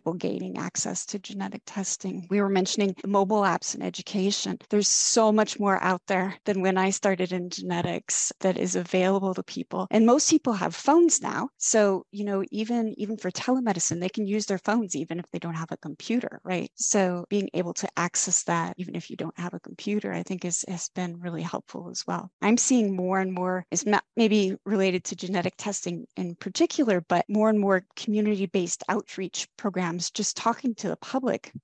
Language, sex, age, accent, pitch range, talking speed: English, female, 30-49, American, 175-205 Hz, 195 wpm